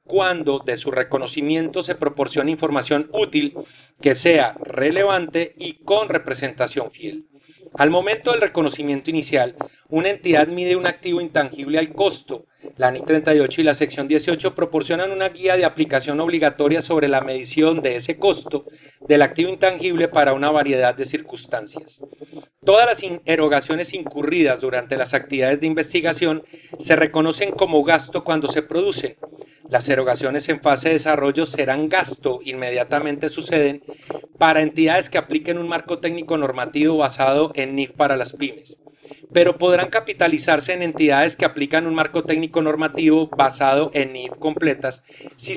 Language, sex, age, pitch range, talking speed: Spanish, male, 40-59, 145-175 Hz, 145 wpm